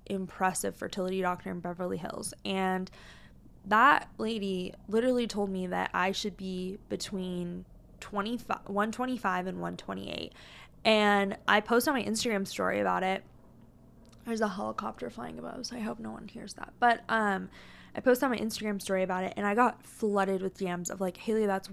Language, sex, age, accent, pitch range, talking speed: English, female, 20-39, American, 195-235 Hz, 170 wpm